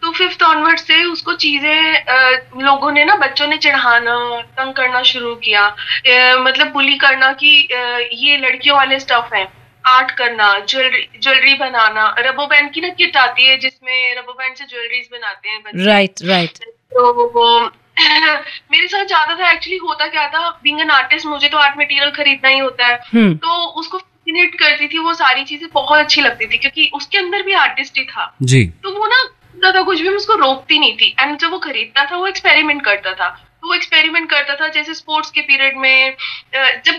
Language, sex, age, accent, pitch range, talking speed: Hindi, female, 30-49, native, 250-315 Hz, 185 wpm